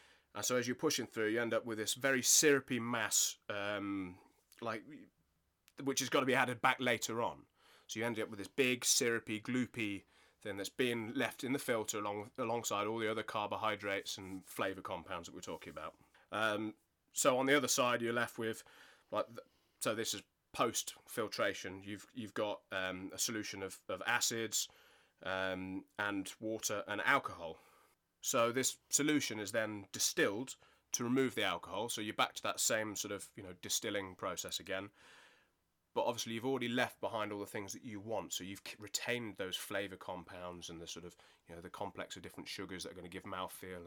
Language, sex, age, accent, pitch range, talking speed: English, male, 30-49, British, 95-120 Hz, 190 wpm